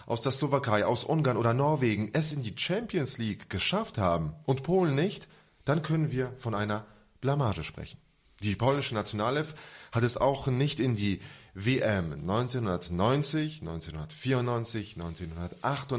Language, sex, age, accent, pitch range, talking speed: English, male, 20-39, German, 95-135 Hz, 135 wpm